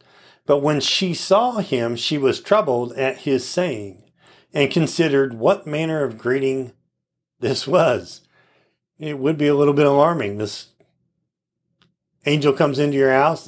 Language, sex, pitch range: English, male, 125-155 Hz